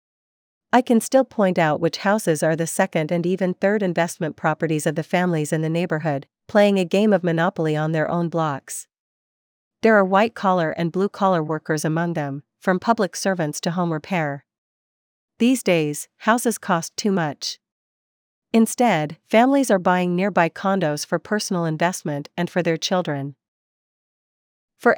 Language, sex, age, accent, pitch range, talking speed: English, female, 40-59, American, 160-200 Hz, 155 wpm